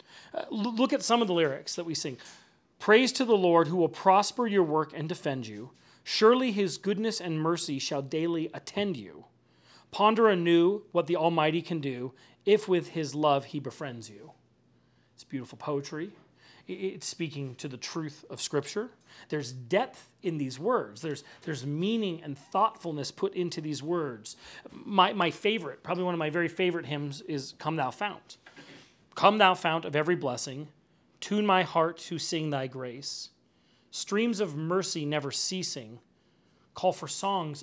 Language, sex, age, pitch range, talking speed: English, male, 30-49, 145-185 Hz, 165 wpm